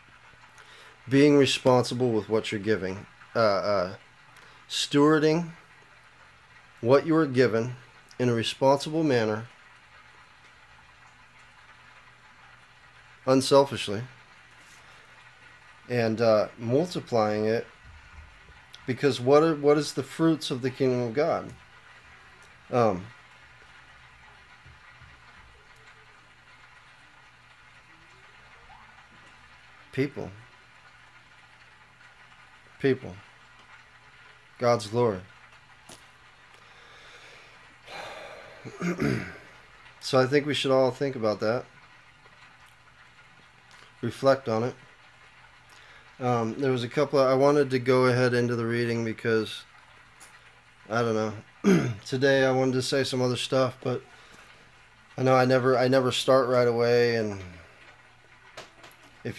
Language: English